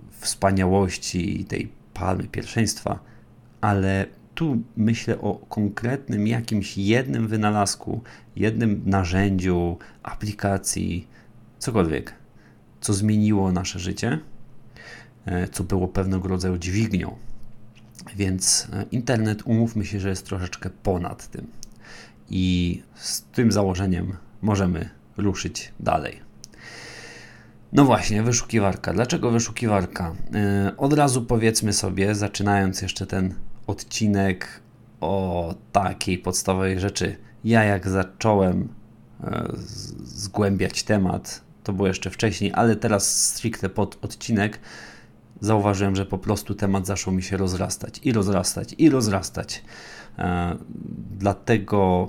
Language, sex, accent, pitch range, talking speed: Polish, male, native, 95-110 Hz, 100 wpm